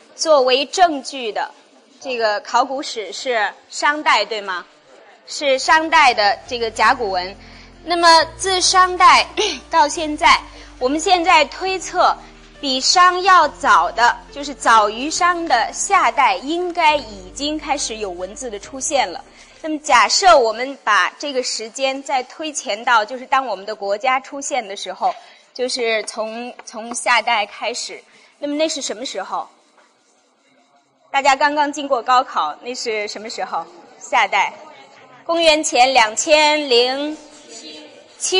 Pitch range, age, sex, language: 245-325 Hz, 20-39, female, Chinese